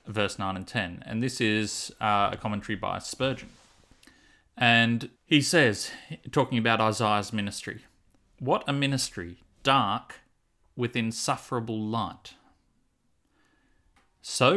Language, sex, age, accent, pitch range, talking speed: English, male, 30-49, Australian, 105-130 Hz, 110 wpm